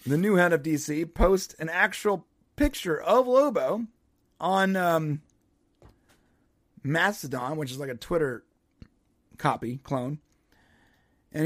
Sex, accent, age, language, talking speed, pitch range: male, American, 40-59, English, 115 wpm, 140-195 Hz